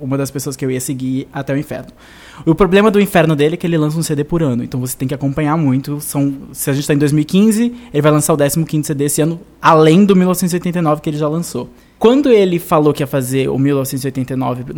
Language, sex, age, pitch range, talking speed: Portuguese, male, 20-39, 145-190 Hz, 240 wpm